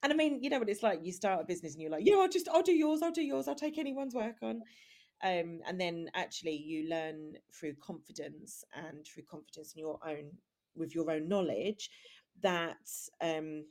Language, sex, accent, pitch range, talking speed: English, female, British, 155-210 Hz, 220 wpm